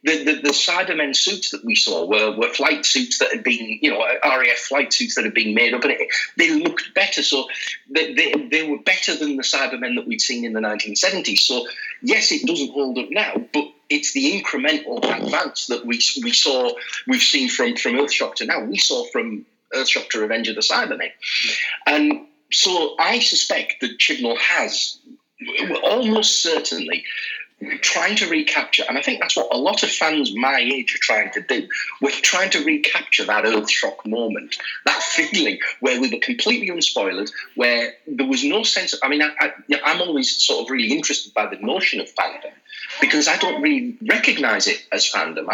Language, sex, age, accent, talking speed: English, male, 40-59, British, 195 wpm